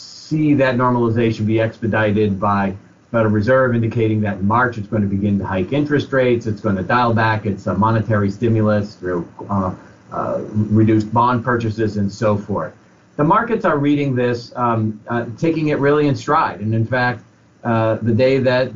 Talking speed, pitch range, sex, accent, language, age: 180 wpm, 110-125 Hz, male, American, English, 40-59